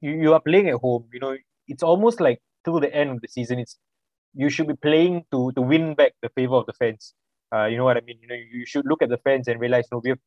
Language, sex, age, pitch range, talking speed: English, male, 20-39, 120-150 Hz, 285 wpm